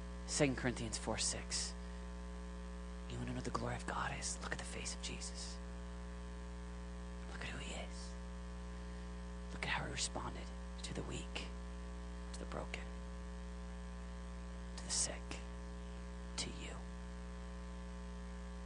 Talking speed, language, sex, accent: 130 wpm, English, male, American